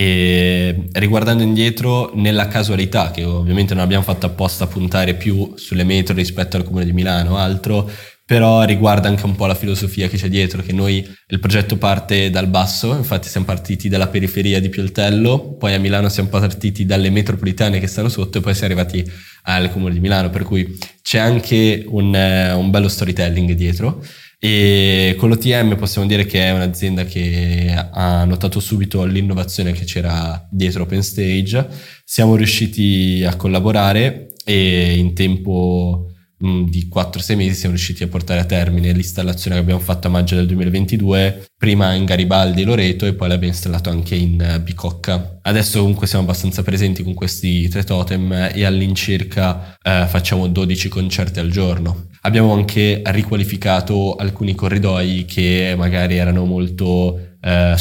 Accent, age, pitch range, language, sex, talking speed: native, 20-39, 90-100 Hz, Italian, male, 160 wpm